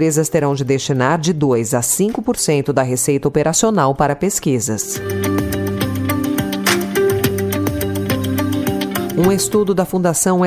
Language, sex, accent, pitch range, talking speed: Portuguese, female, Brazilian, 135-190 Hz, 95 wpm